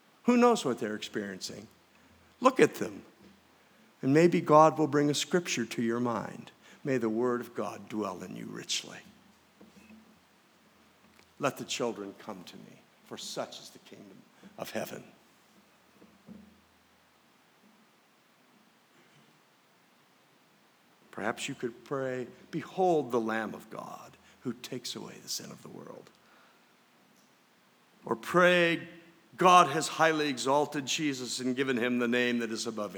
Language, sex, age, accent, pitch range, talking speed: English, male, 50-69, American, 125-175 Hz, 130 wpm